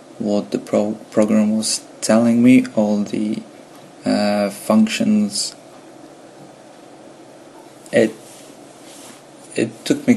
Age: 20-39